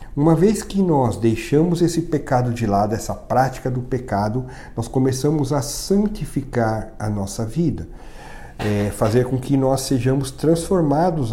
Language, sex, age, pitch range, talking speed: Portuguese, male, 50-69, 110-150 Hz, 140 wpm